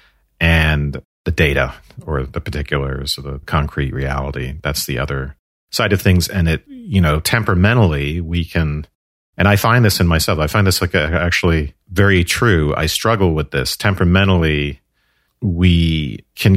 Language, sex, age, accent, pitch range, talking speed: English, male, 40-59, American, 75-90 Hz, 160 wpm